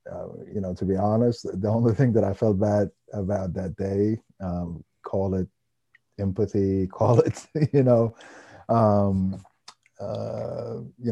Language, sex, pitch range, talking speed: English, male, 90-115 Hz, 130 wpm